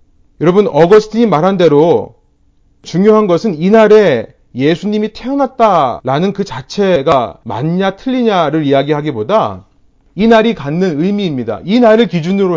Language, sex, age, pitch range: Korean, male, 30-49, 135-210 Hz